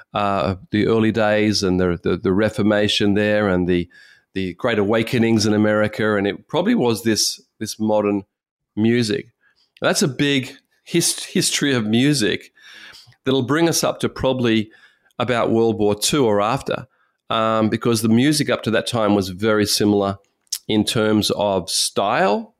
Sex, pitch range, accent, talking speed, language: male, 105-125 Hz, Australian, 160 wpm, English